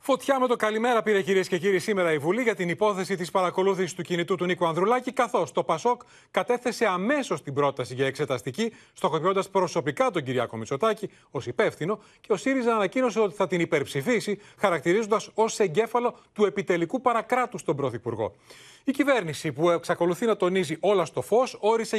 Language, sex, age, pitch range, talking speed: Greek, male, 30-49, 155-220 Hz, 170 wpm